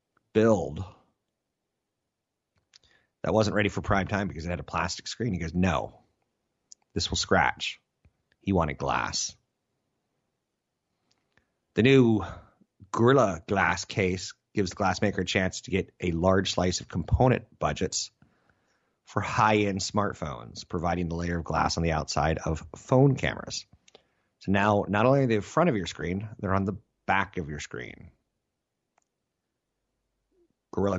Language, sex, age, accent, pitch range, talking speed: English, male, 30-49, American, 85-105 Hz, 140 wpm